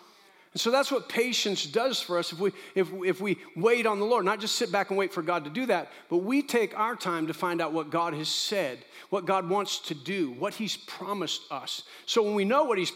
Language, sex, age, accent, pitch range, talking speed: English, male, 50-69, American, 180-230 Hz, 255 wpm